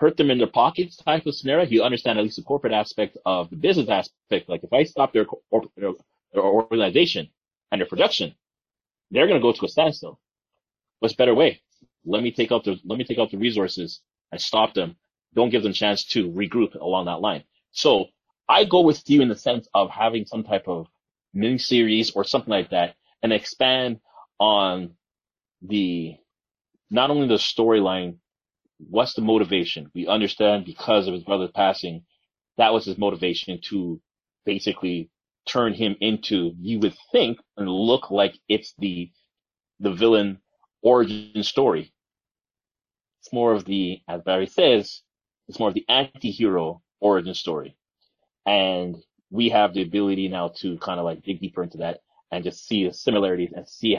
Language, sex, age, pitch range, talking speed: English, male, 30-49, 95-115 Hz, 175 wpm